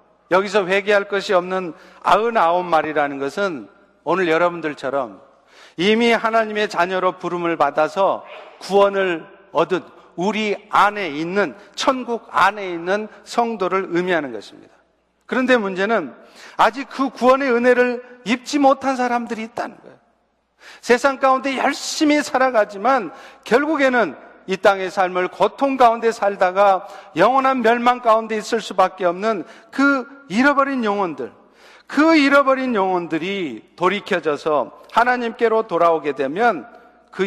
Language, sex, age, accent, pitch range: Korean, male, 50-69, native, 175-240 Hz